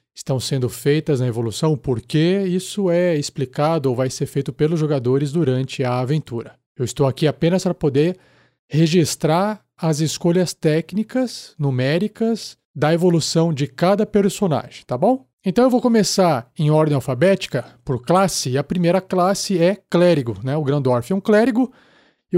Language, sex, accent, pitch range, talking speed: Portuguese, male, Brazilian, 140-190 Hz, 155 wpm